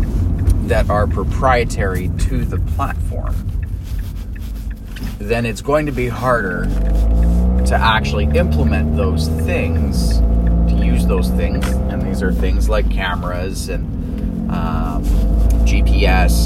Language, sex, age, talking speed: English, male, 30-49, 110 wpm